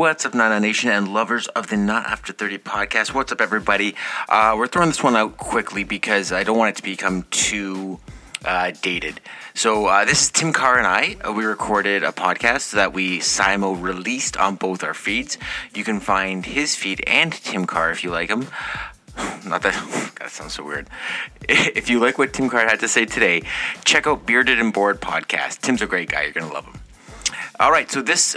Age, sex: 30-49, male